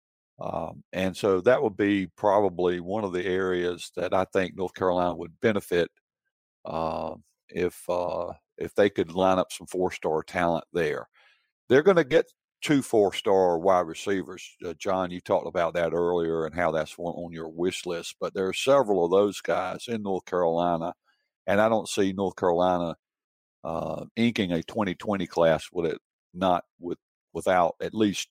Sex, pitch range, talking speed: male, 85-100 Hz, 170 wpm